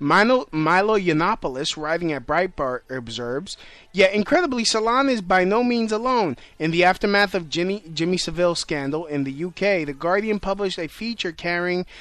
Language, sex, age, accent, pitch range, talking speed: English, male, 30-49, American, 155-195 Hz, 165 wpm